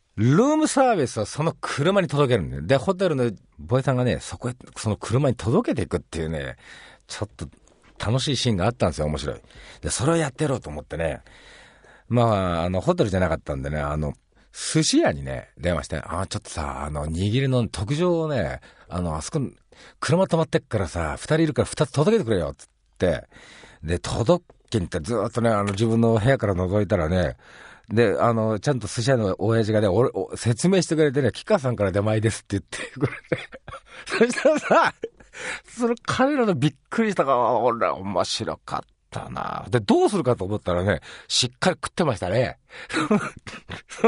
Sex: male